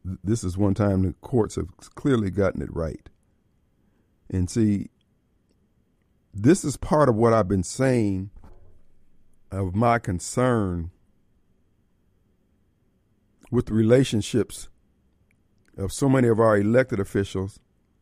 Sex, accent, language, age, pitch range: male, American, Japanese, 50-69, 95-120 Hz